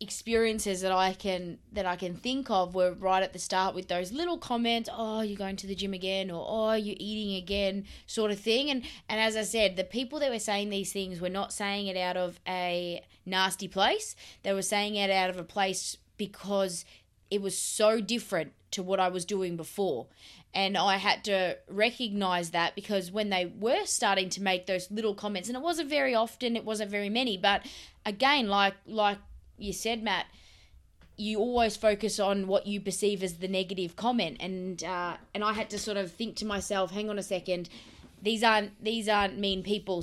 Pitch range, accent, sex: 185-215 Hz, Australian, female